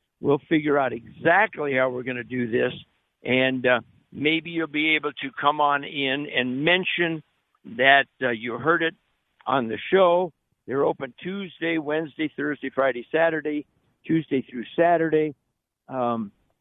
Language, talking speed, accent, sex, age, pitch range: English, 150 wpm, American, male, 60-79, 135-165 Hz